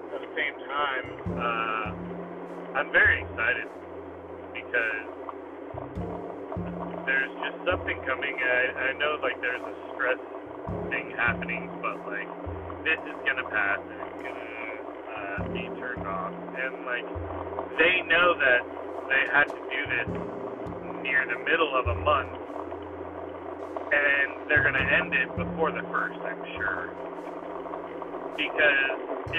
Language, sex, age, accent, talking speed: English, male, 40-59, American, 135 wpm